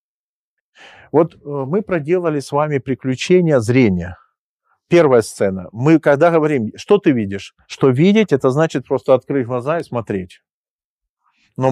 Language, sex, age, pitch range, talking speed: Ukrainian, male, 40-59, 120-155 Hz, 130 wpm